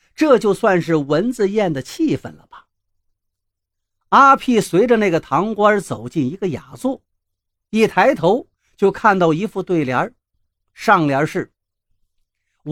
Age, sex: 50-69, male